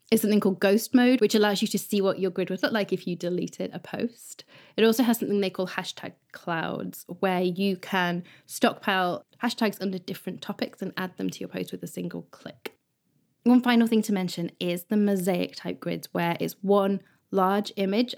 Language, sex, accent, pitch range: English, female, British, 175-215 Hz